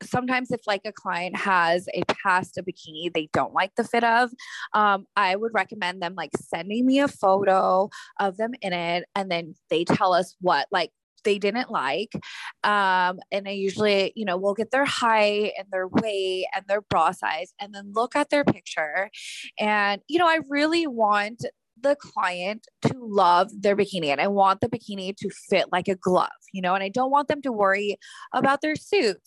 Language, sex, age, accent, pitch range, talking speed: English, female, 20-39, American, 190-240 Hz, 200 wpm